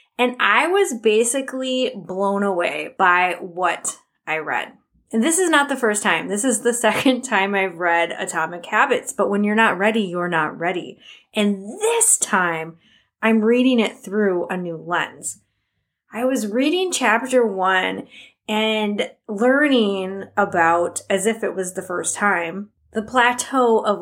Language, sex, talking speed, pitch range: English, female, 155 wpm, 185-235 Hz